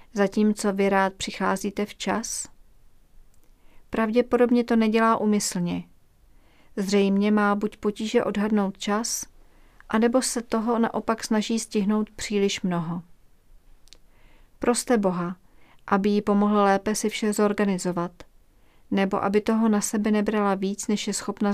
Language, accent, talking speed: Czech, native, 120 wpm